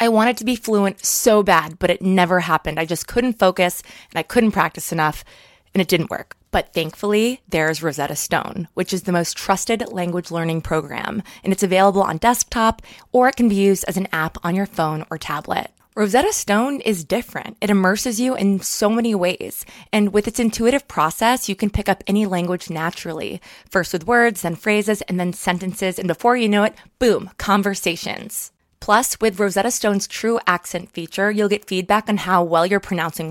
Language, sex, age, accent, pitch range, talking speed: English, female, 20-39, American, 175-220 Hz, 195 wpm